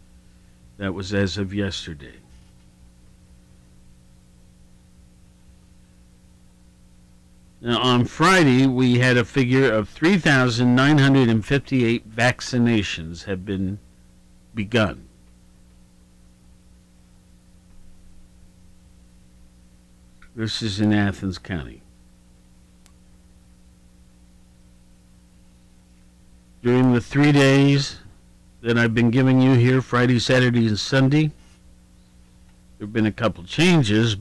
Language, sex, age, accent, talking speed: English, male, 50-69, American, 75 wpm